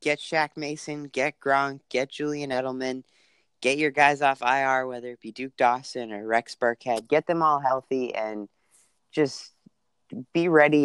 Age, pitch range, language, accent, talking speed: 30-49, 110-150 Hz, English, American, 160 wpm